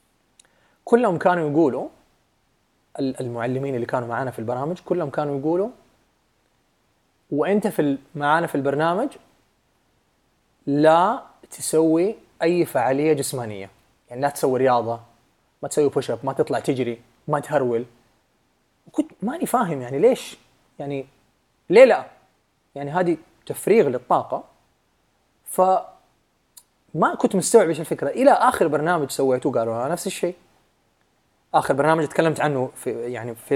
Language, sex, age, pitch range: Arabic, male, 30-49, 130-175 Hz